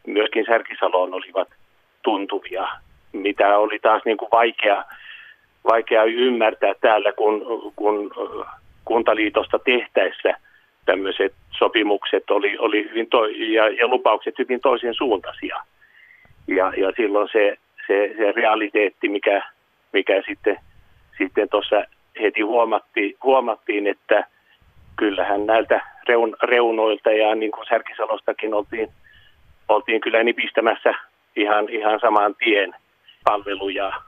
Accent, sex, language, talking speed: native, male, Finnish, 105 wpm